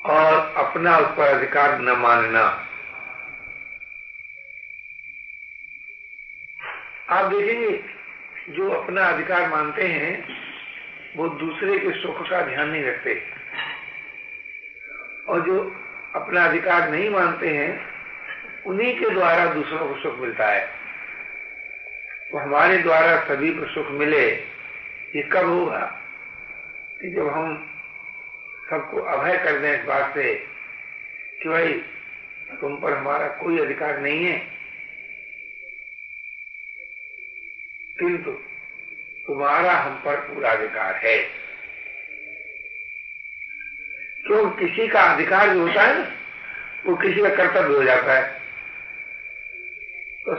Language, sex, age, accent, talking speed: Hindi, male, 60-79, native, 110 wpm